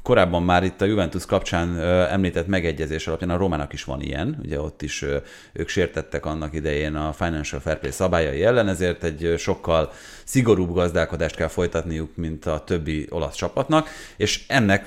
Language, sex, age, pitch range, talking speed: Hungarian, male, 30-49, 80-100 Hz, 165 wpm